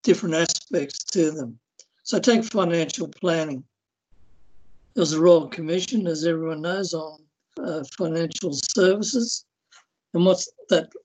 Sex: male